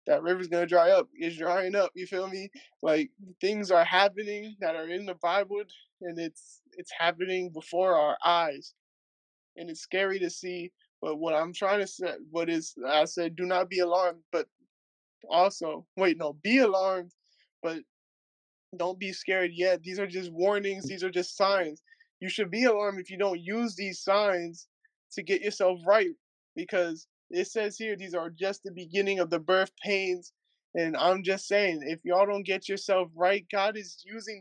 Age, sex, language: 20-39, male, English